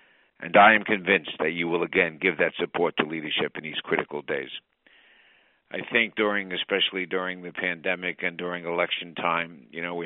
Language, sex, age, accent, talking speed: English, male, 60-79, American, 185 wpm